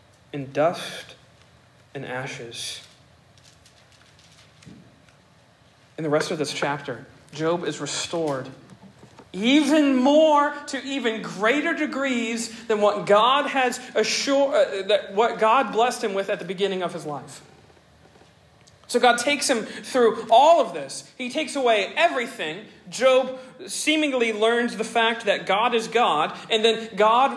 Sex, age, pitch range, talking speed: male, 40-59, 160-245 Hz, 130 wpm